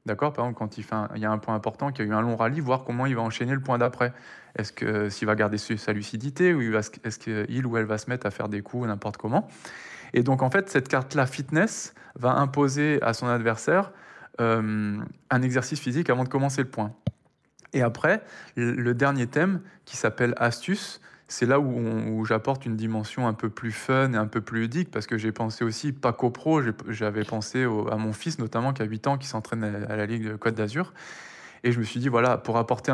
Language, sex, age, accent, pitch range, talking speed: French, male, 20-39, French, 110-135 Hz, 235 wpm